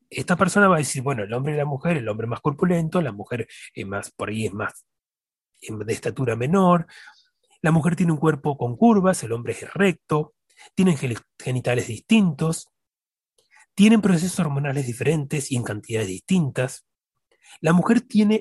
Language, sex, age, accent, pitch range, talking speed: Spanish, male, 30-49, Argentinian, 125-185 Hz, 165 wpm